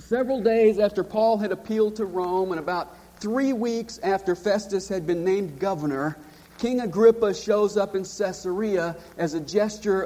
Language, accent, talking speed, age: English, American, 160 wpm, 40-59